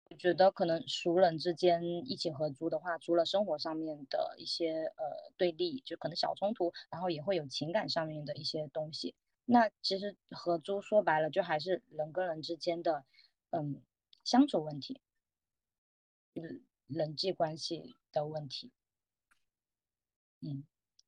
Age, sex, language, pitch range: 20-39, female, Chinese, 160-210 Hz